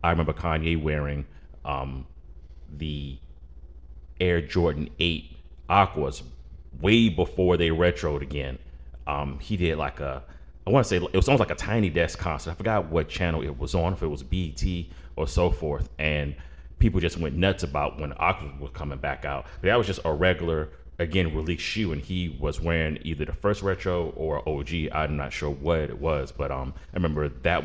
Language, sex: English, male